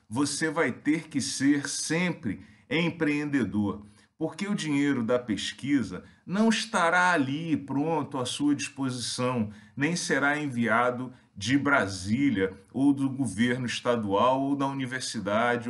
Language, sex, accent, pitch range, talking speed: Portuguese, male, Brazilian, 110-145 Hz, 120 wpm